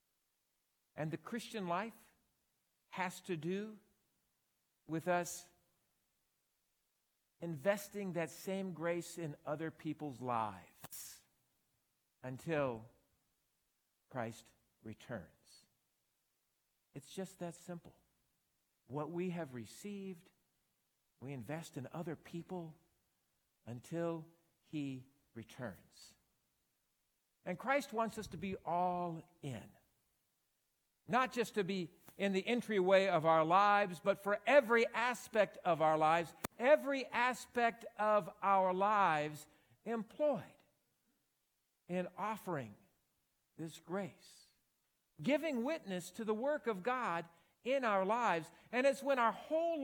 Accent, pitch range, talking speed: American, 155-215 Hz, 105 wpm